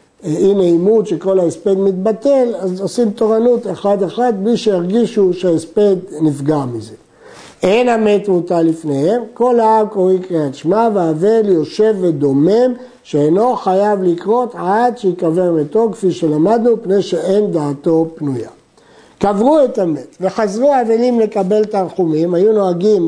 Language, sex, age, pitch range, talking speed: Hebrew, male, 60-79, 165-225 Hz, 120 wpm